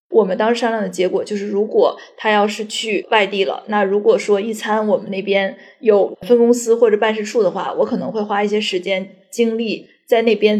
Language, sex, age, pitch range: Chinese, female, 20-39, 205-270 Hz